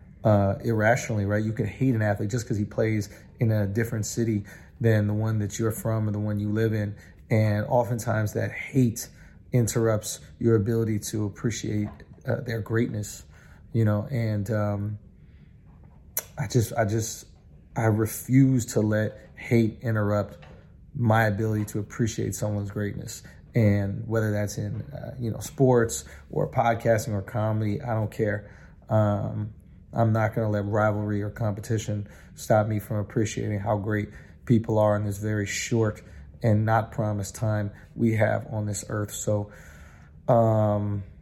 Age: 30-49